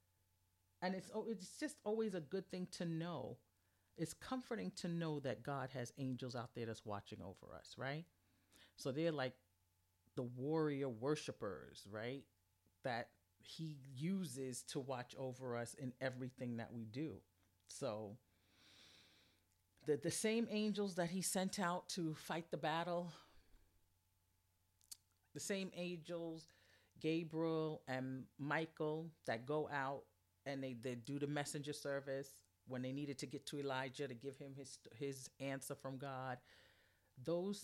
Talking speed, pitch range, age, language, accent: 140 wpm, 110-160 Hz, 40-59, English, American